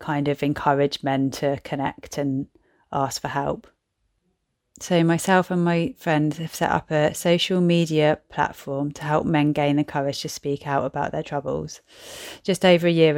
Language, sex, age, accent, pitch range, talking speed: English, female, 30-49, British, 145-160 Hz, 175 wpm